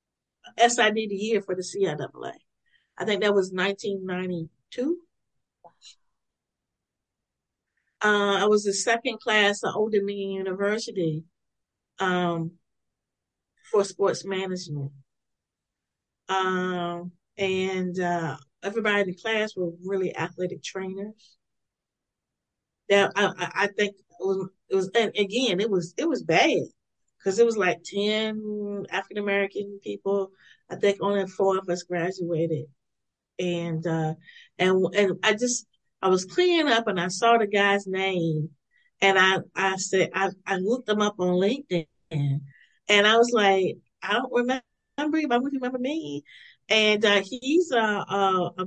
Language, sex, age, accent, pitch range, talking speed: English, female, 40-59, American, 180-220 Hz, 135 wpm